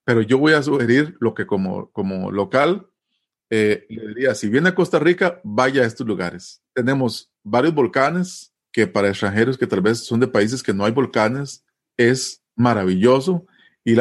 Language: Spanish